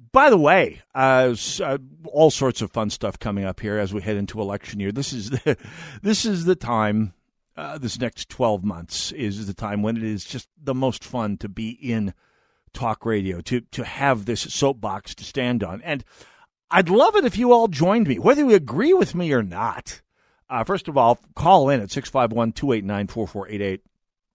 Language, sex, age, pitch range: English, male, 50-69, 105-135 Hz